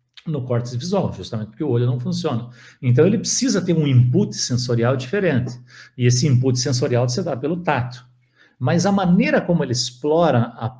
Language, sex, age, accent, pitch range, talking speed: Portuguese, male, 60-79, Brazilian, 120-155 Hz, 170 wpm